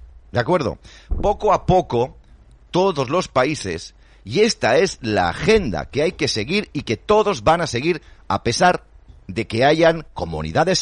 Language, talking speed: Spanish, 160 wpm